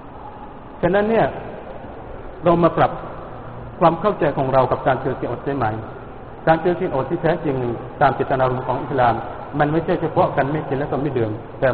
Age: 60-79